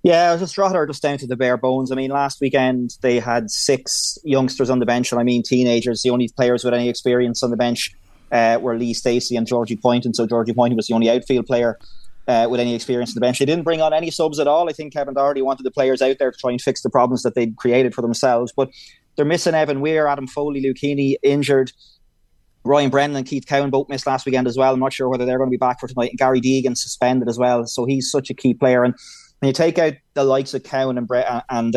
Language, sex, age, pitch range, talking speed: English, male, 20-39, 120-140 Hz, 265 wpm